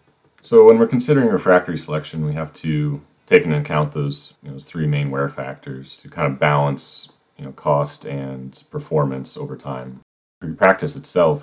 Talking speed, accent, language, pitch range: 180 wpm, American, English, 70-85 Hz